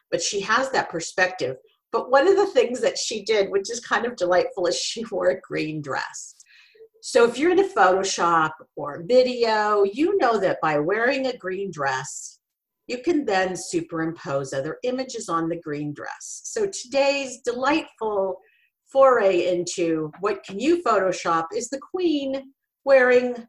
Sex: female